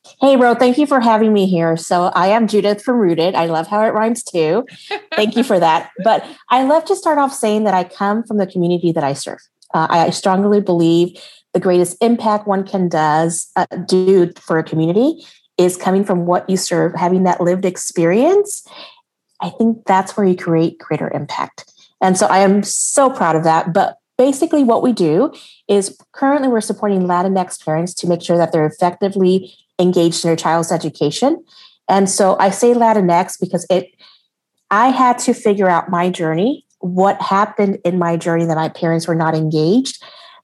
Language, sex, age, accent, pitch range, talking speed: English, female, 30-49, American, 175-225 Hz, 190 wpm